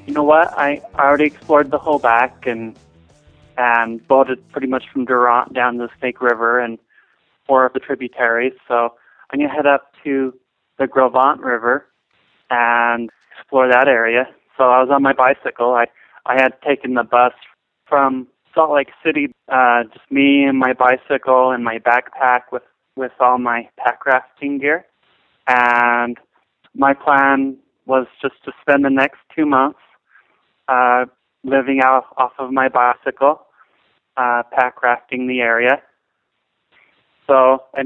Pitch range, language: 120-140 Hz, English